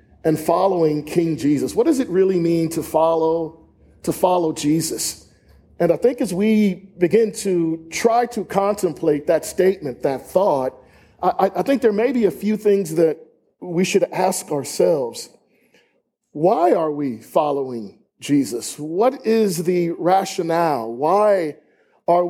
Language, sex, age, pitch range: English, male, 40-59, 160-210 Hz